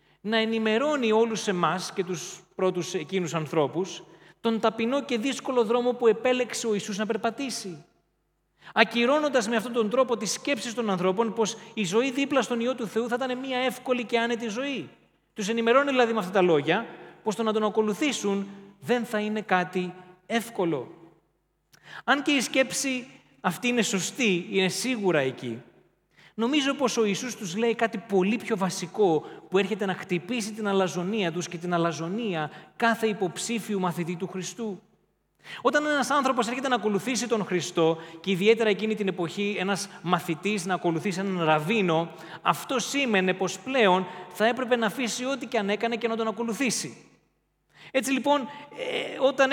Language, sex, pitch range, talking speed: Greek, male, 180-240 Hz, 160 wpm